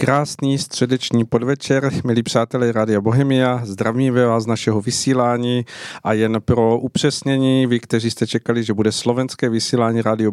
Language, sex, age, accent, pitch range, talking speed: Czech, male, 40-59, native, 105-120 Hz, 140 wpm